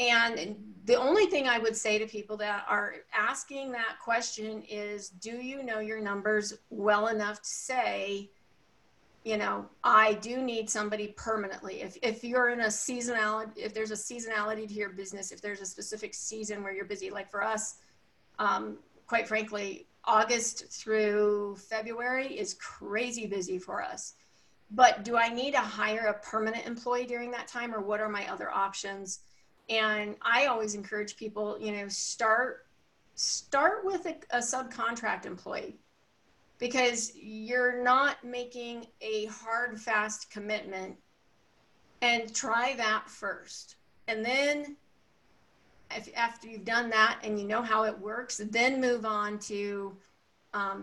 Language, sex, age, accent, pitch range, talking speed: English, female, 40-59, American, 205-235 Hz, 150 wpm